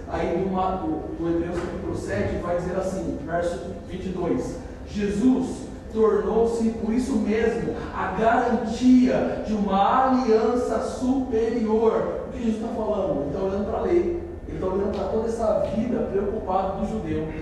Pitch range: 195-240 Hz